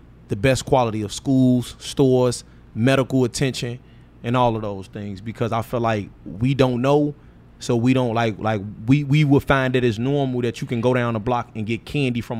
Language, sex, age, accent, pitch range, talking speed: English, male, 30-49, American, 110-135 Hz, 210 wpm